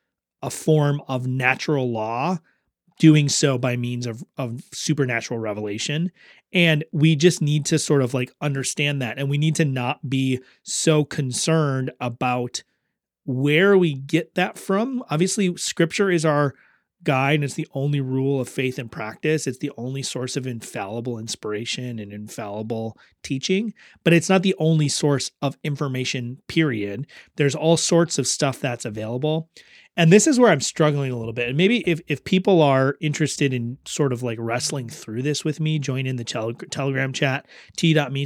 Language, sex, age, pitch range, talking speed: English, male, 30-49, 125-160 Hz, 170 wpm